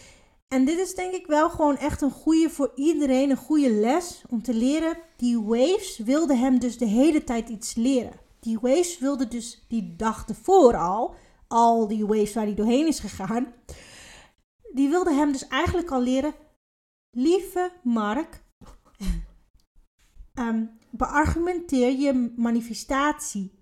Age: 30-49